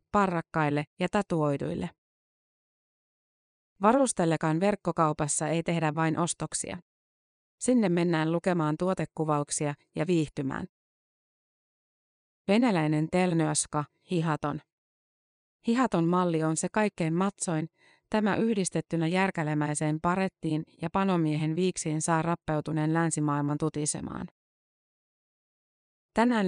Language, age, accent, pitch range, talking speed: Finnish, 30-49, native, 155-185 Hz, 80 wpm